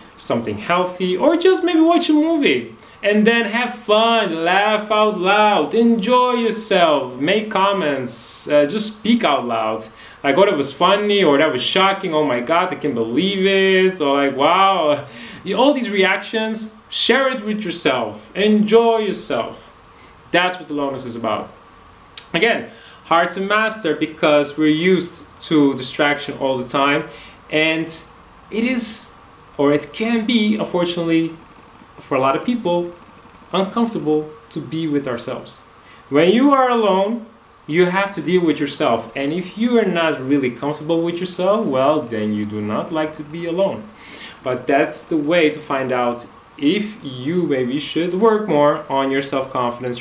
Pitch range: 140-205 Hz